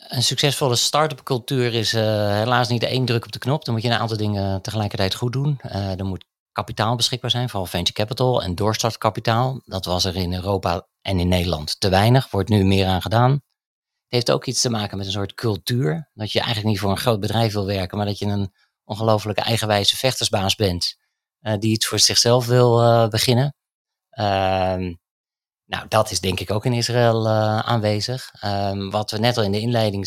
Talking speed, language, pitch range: 205 wpm, Dutch, 100-120 Hz